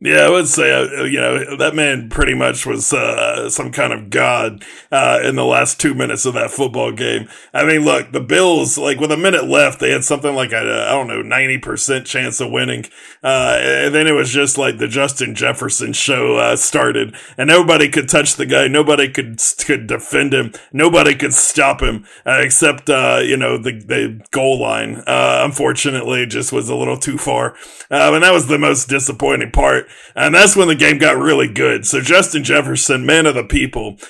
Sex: male